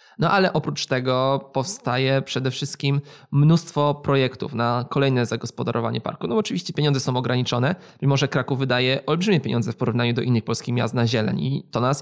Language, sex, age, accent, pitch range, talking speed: Polish, male, 20-39, native, 125-145 Hz, 175 wpm